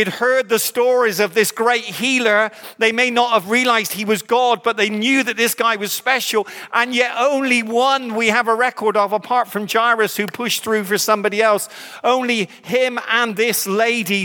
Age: 50-69